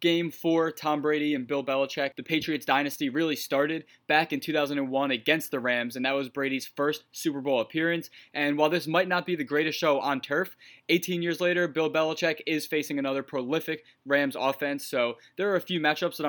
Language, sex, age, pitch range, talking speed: English, male, 20-39, 140-165 Hz, 205 wpm